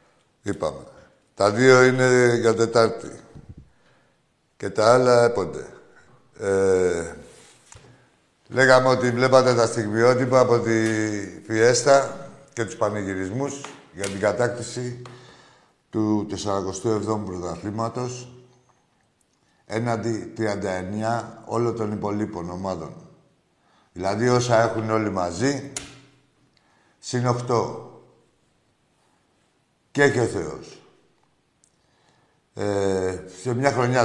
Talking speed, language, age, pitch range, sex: 85 wpm, Greek, 60-79, 100-130 Hz, male